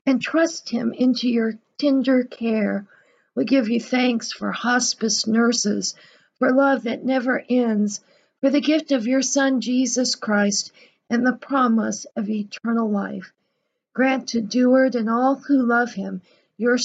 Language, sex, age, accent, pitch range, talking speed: English, female, 50-69, American, 220-265 Hz, 150 wpm